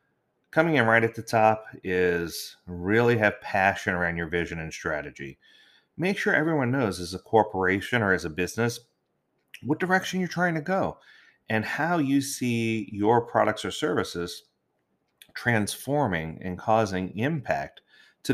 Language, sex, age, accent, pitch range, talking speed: English, male, 30-49, American, 95-130 Hz, 145 wpm